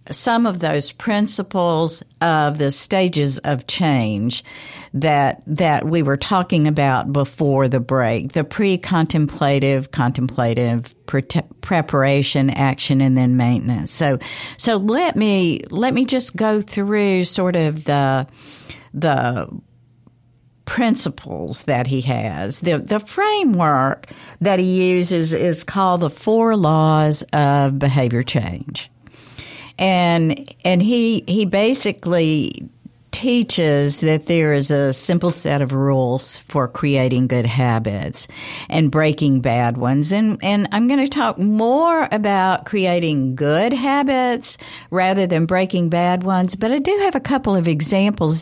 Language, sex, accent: English, female, American